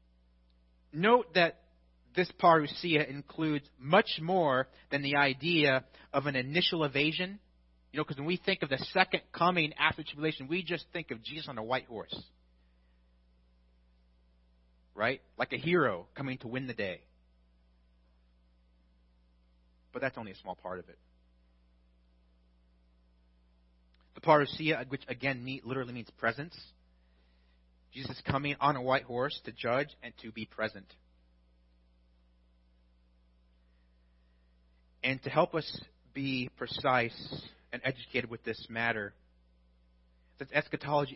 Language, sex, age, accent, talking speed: English, male, 30-49, American, 125 wpm